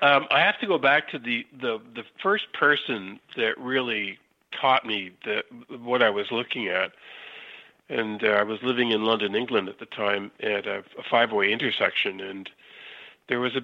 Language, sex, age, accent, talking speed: English, male, 50-69, American, 185 wpm